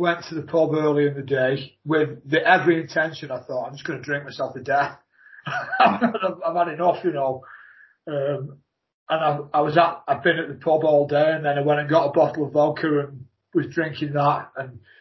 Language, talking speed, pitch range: English, 225 wpm, 140-165 Hz